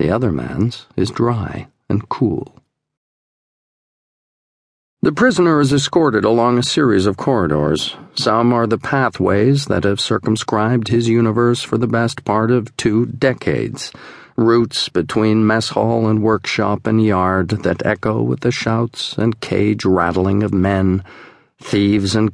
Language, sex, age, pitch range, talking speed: English, male, 50-69, 100-125 Hz, 140 wpm